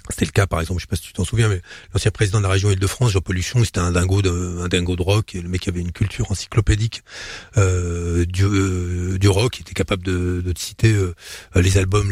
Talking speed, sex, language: 250 wpm, male, French